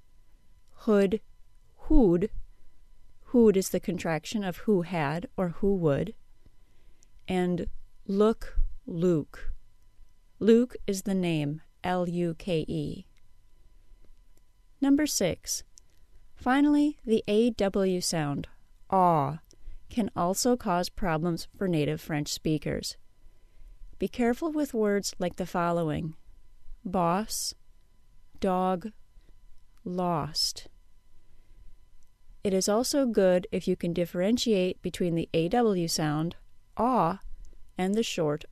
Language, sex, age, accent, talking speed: English, female, 30-49, American, 95 wpm